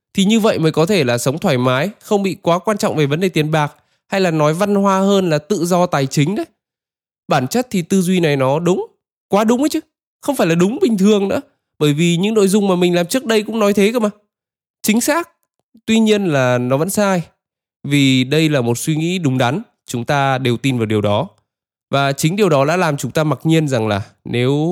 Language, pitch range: Vietnamese, 150-200 Hz